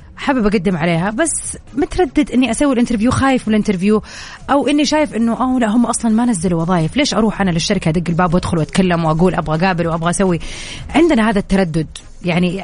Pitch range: 195-250 Hz